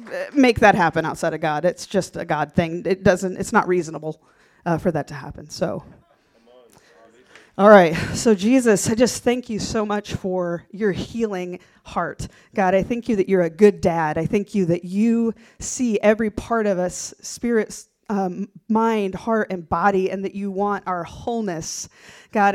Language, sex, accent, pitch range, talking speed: English, female, American, 195-235 Hz, 180 wpm